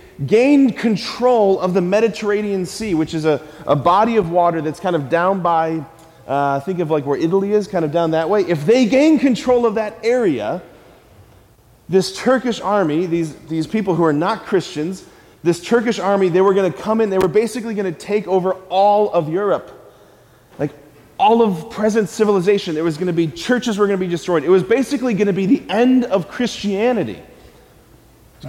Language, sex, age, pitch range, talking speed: English, male, 30-49, 170-215 Hz, 195 wpm